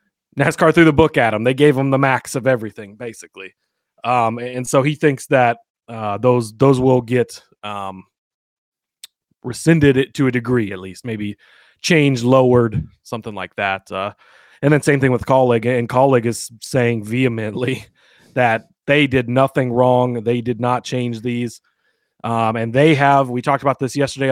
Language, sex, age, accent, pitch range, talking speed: English, male, 30-49, American, 115-130 Hz, 170 wpm